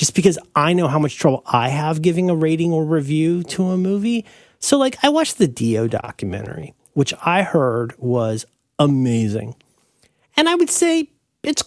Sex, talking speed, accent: male, 175 wpm, American